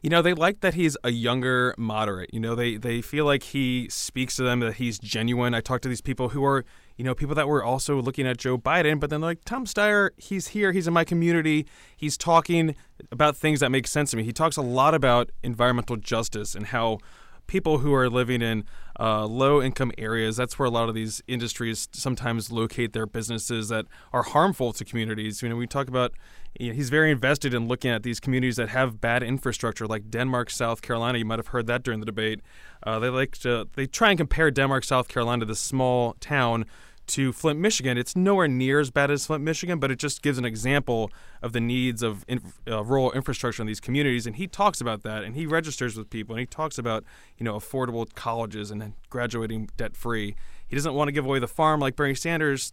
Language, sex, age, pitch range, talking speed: English, male, 20-39, 115-145 Hz, 220 wpm